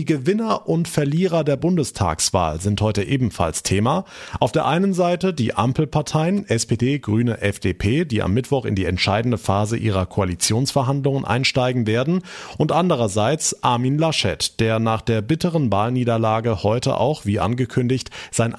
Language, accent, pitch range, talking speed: German, German, 105-155 Hz, 140 wpm